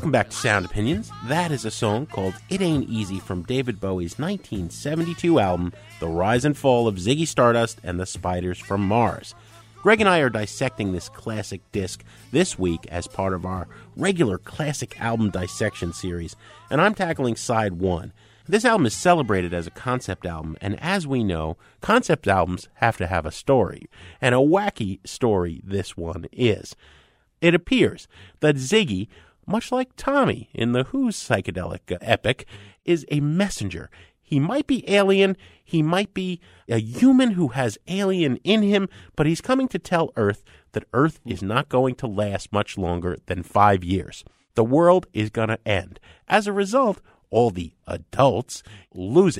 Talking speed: 170 wpm